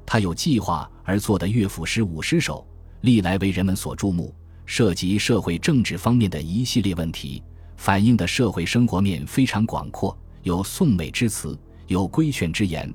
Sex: male